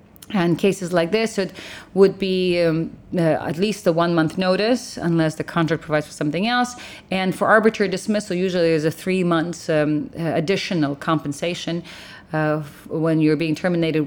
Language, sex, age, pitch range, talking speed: English, female, 40-59, 155-195 Hz, 155 wpm